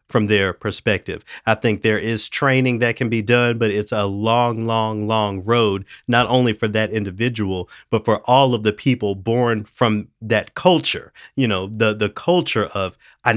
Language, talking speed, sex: English, 185 wpm, male